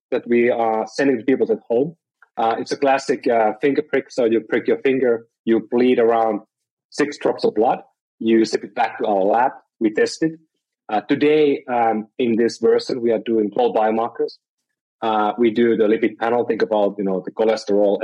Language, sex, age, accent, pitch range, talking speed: English, male, 30-49, Finnish, 105-135 Hz, 200 wpm